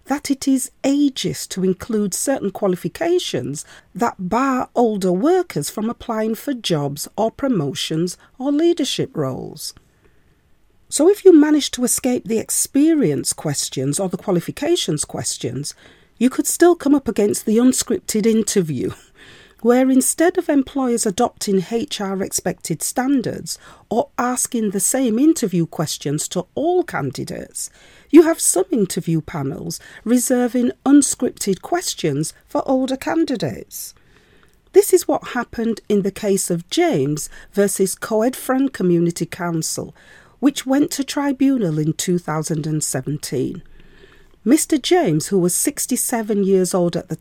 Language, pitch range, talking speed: English, 180-290 Hz, 125 wpm